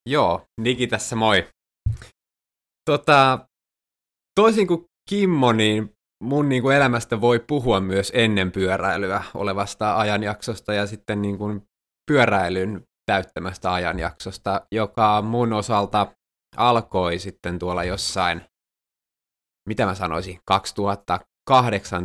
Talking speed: 105 wpm